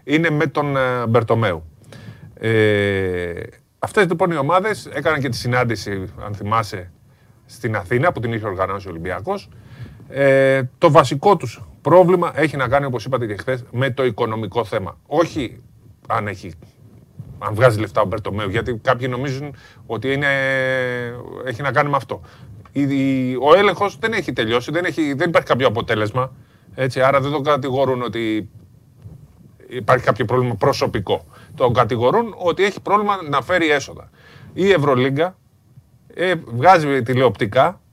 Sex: male